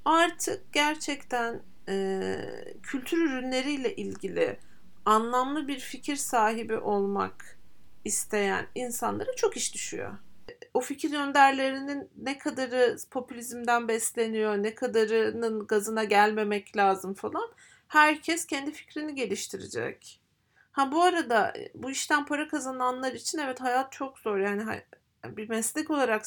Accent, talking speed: native, 110 wpm